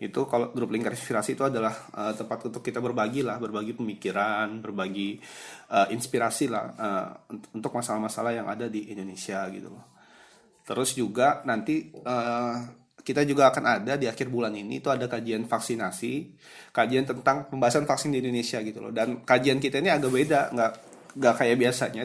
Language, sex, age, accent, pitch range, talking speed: Indonesian, male, 20-39, native, 115-135 Hz, 170 wpm